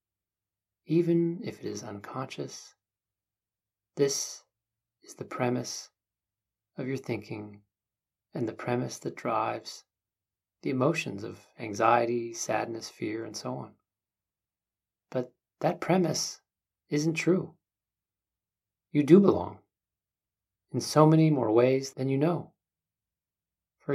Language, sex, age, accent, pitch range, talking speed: English, male, 40-59, American, 100-150 Hz, 110 wpm